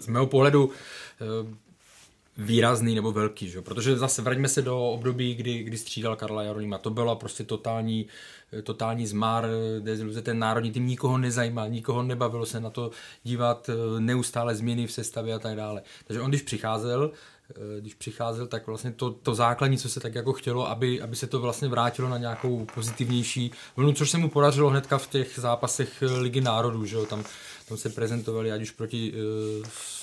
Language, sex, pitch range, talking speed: Czech, male, 115-130 Hz, 180 wpm